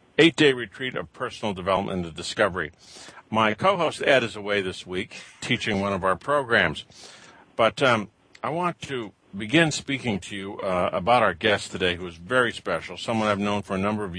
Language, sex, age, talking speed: English, male, 60-79, 185 wpm